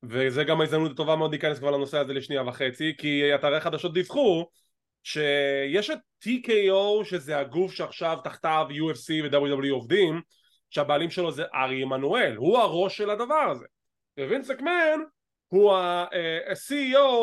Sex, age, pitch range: male, 20-39, 155-265 Hz